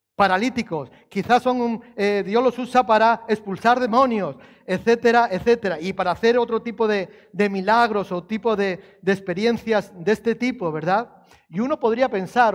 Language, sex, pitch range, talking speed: Spanish, male, 170-225 Hz, 165 wpm